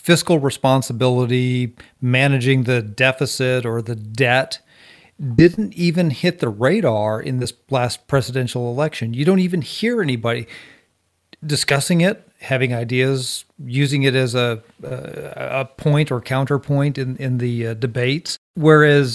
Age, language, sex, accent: 40-59, English, male, American